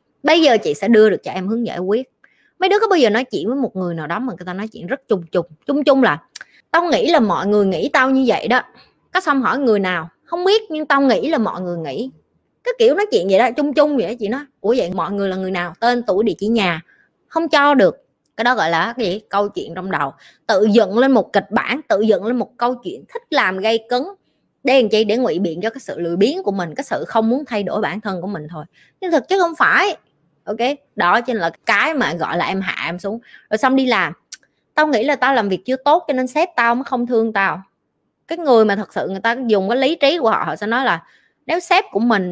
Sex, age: female, 20-39